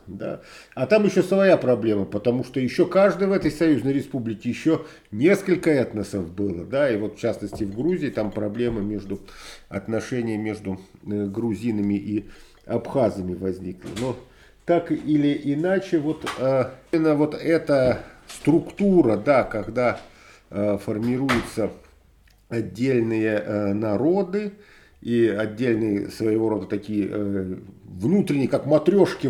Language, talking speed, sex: Russian, 125 wpm, male